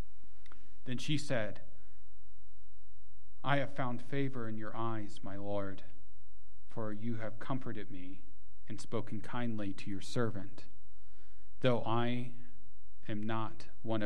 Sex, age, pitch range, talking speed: male, 40-59, 100-125 Hz, 120 wpm